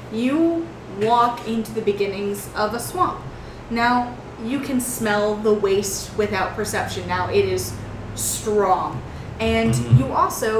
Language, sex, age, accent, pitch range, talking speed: English, female, 20-39, American, 200-235 Hz, 130 wpm